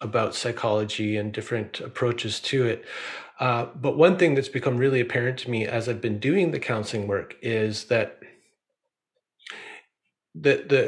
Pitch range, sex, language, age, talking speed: 110-135 Hz, male, English, 30-49, 145 wpm